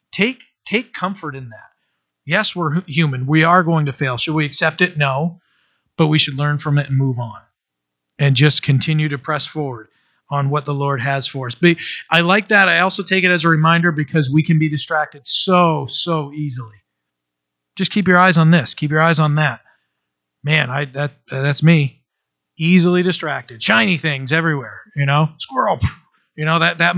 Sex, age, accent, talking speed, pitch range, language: male, 40-59, American, 195 wpm, 135-165 Hz, English